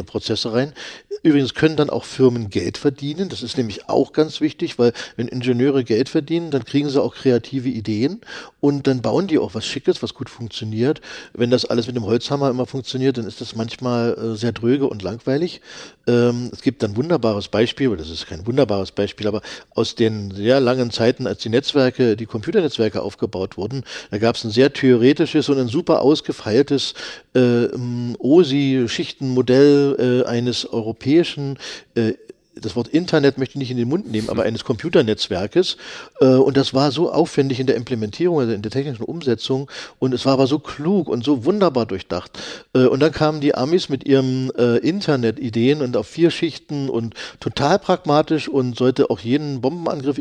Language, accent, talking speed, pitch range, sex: German, German, 175 wpm, 115-140 Hz, male